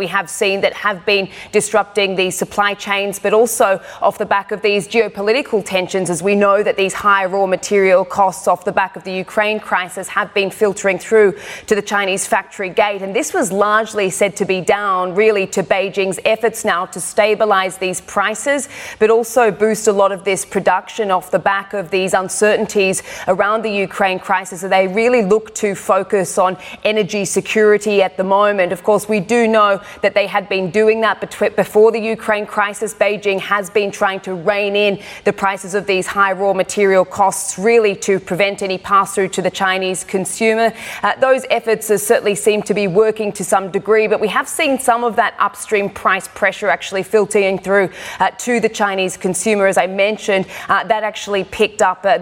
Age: 20-39